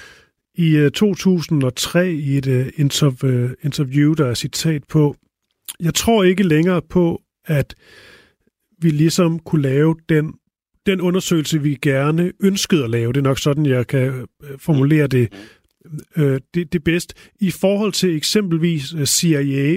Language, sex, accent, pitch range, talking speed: Danish, male, native, 140-180 Hz, 130 wpm